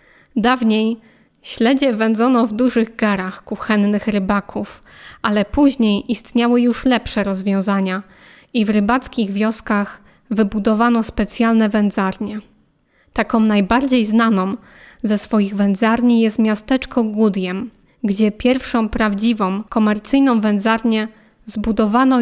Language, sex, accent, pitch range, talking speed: Polish, female, native, 205-235 Hz, 95 wpm